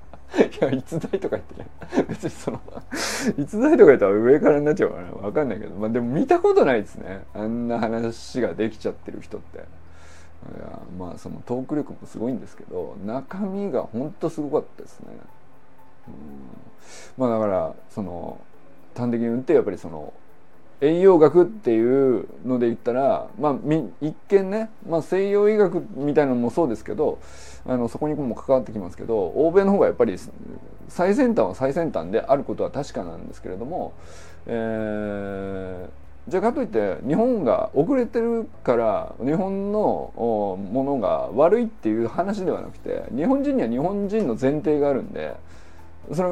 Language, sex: Japanese, male